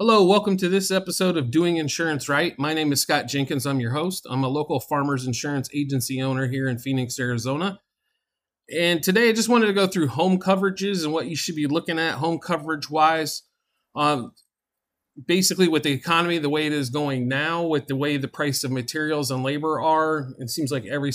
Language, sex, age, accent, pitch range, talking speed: English, male, 40-59, American, 140-170 Hz, 205 wpm